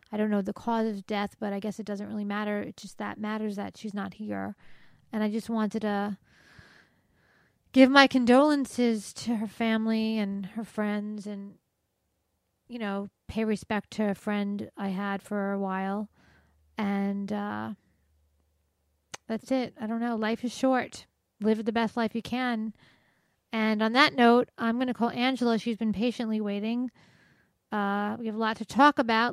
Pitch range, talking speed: 200-235 Hz, 175 wpm